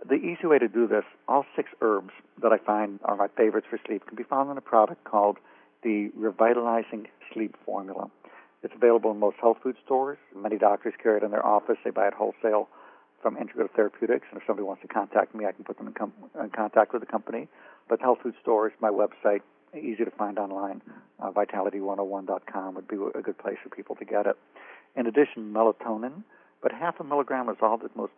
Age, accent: 60-79, American